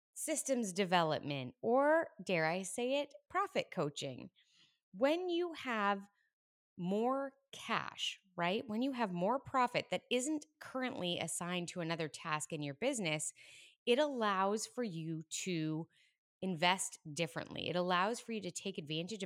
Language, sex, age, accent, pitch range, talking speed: English, female, 20-39, American, 165-250 Hz, 135 wpm